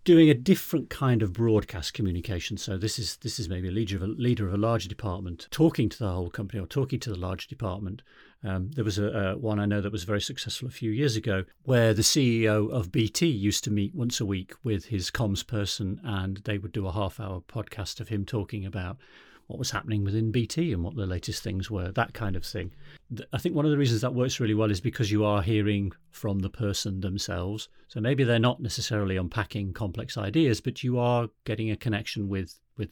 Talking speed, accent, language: 230 wpm, British, English